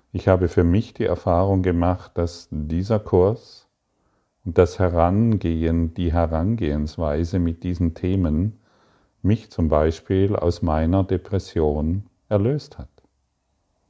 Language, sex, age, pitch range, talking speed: German, male, 50-69, 85-100 Hz, 110 wpm